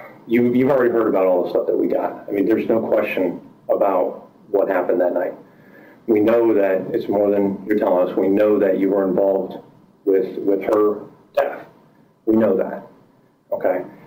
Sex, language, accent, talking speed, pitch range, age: male, English, American, 190 wpm, 100-150 Hz, 40-59